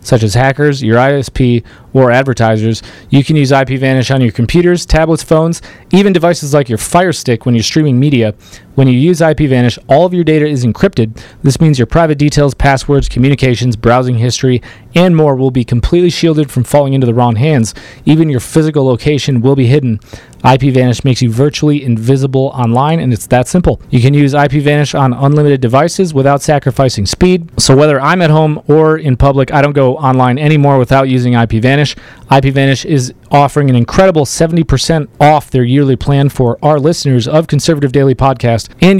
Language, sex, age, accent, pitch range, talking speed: English, male, 30-49, American, 125-155 Hz, 190 wpm